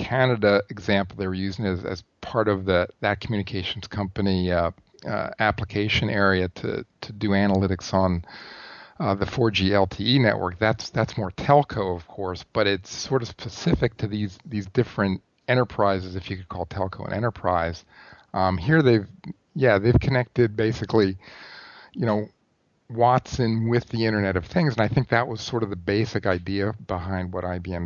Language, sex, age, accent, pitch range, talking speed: English, male, 40-59, American, 95-110 Hz, 170 wpm